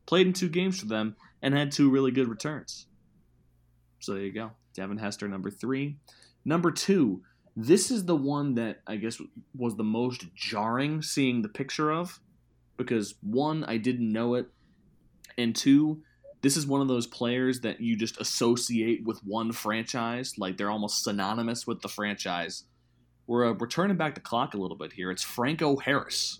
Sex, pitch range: male, 105-130 Hz